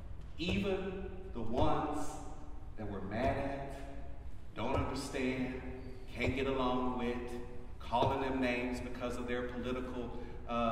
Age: 40-59